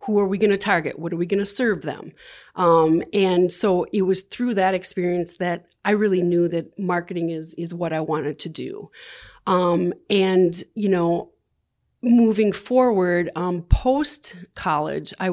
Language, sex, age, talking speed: English, female, 30-49, 170 wpm